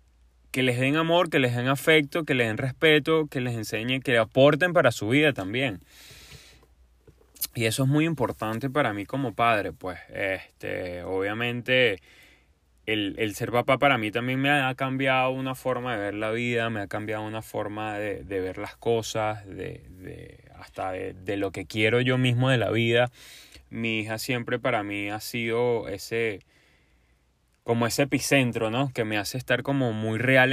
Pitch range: 100-130 Hz